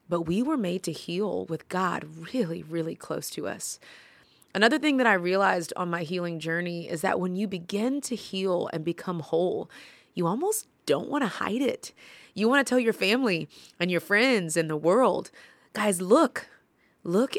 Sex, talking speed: female, 185 wpm